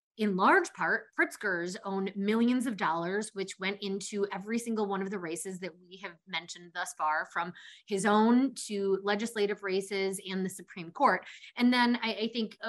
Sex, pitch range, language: female, 195-230 Hz, English